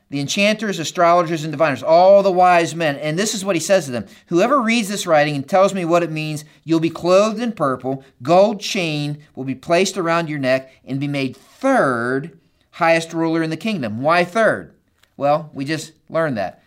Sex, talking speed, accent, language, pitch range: male, 200 wpm, American, English, 125-165 Hz